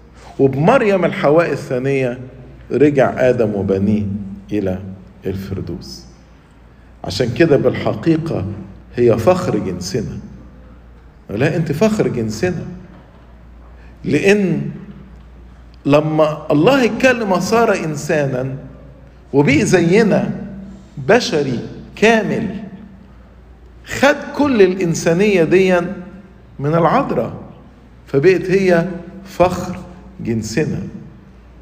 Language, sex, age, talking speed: English, male, 50-69, 70 wpm